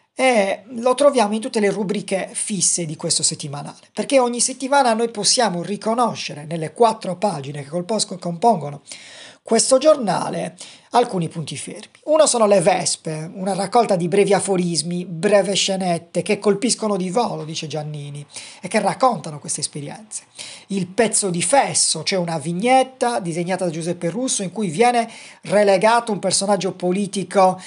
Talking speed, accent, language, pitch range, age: 150 wpm, native, Italian, 170-230 Hz, 40-59